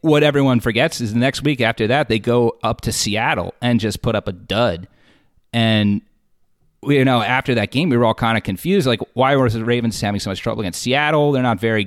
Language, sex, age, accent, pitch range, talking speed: English, male, 30-49, American, 100-125 Hz, 240 wpm